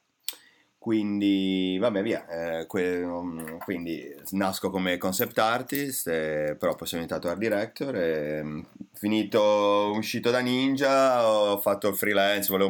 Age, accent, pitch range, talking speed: 30-49, native, 90-100 Hz, 130 wpm